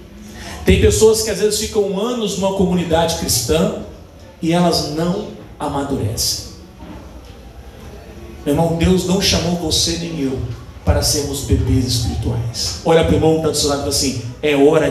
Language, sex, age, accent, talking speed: Portuguese, male, 40-59, Brazilian, 155 wpm